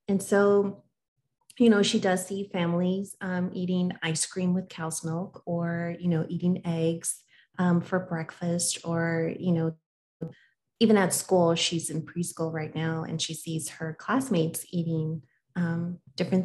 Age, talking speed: 30-49, 155 wpm